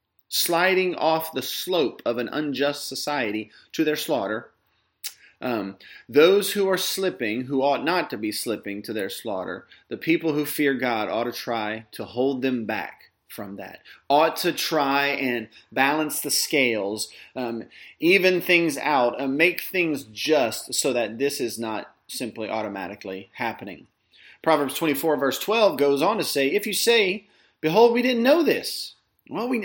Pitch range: 130-165 Hz